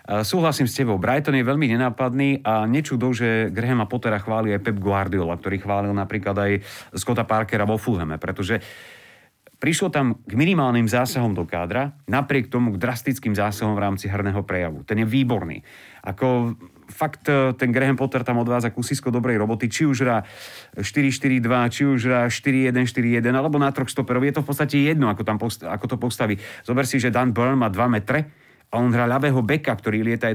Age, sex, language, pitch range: 30-49, male, Slovak, 105-130 Hz